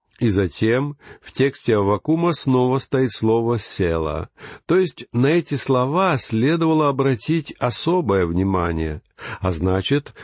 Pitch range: 105-140 Hz